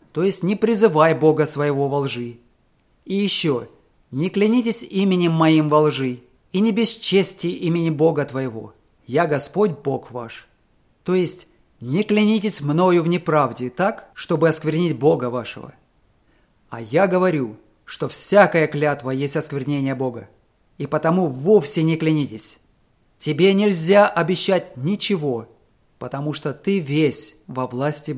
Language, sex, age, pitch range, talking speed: English, male, 30-49, 140-190 Hz, 135 wpm